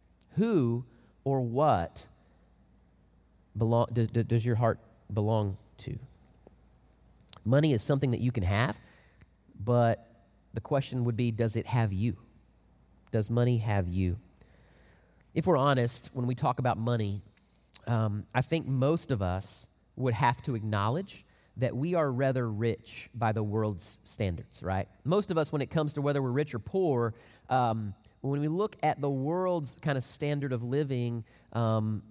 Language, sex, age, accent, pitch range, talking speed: English, male, 30-49, American, 105-135 Hz, 155 wpm